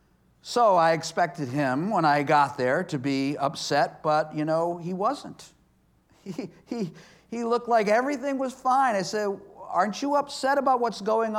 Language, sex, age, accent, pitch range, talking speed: English, male, 50-69, American, 145-215 Hz, 170 wpm